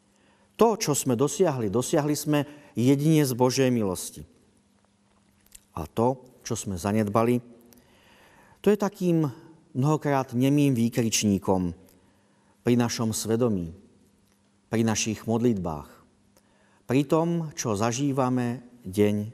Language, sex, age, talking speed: Slovak, male, 50-69, 100 wpm